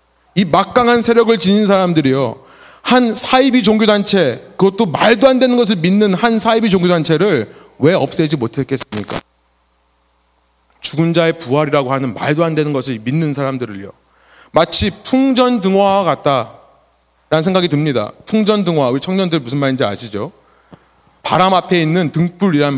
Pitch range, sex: 140-225 Hz, male